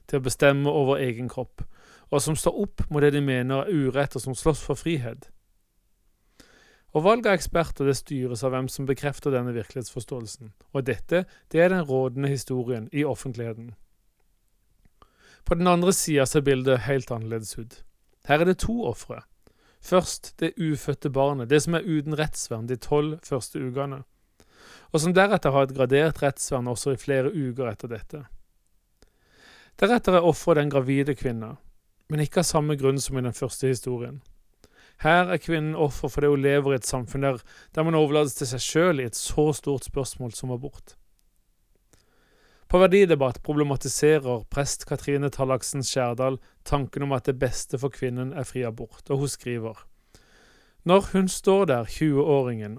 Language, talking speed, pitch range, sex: English, 165 wpm, 125-150 Hz, male